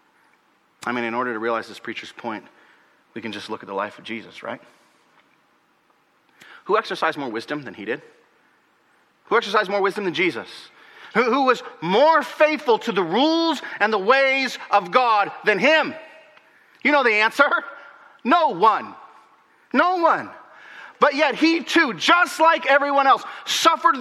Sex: male